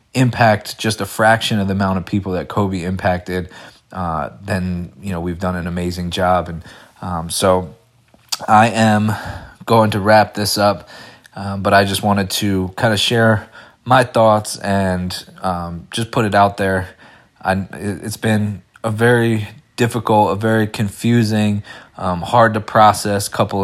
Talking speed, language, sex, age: 160 wpm, English, male, 20-39